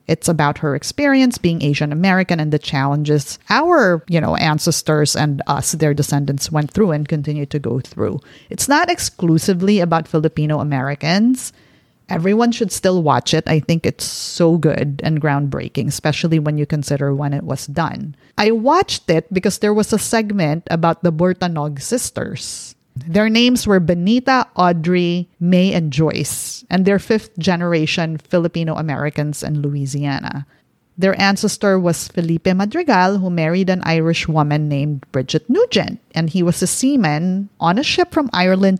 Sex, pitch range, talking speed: female, 150-190 Hz, 160 wpm